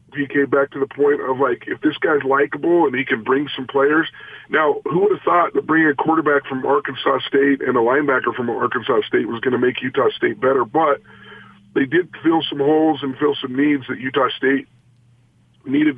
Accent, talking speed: American, 210 wpm